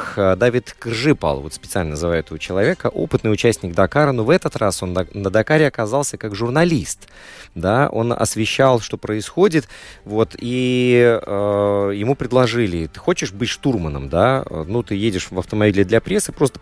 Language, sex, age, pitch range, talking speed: Russian, male, 30-49, 100-135 Hz, 155 wpm